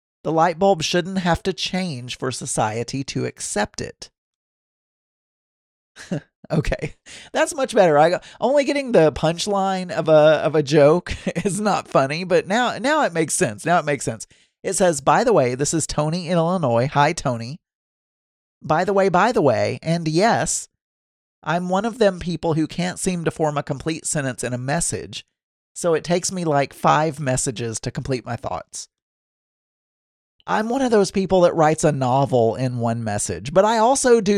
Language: English